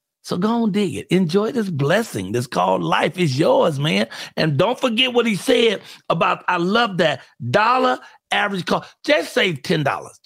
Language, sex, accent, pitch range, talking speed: English, male, American, 135-205 Hz, 175 wpm